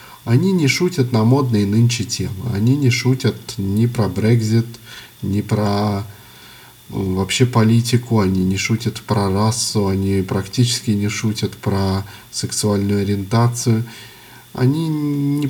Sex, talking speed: male, 120 wpm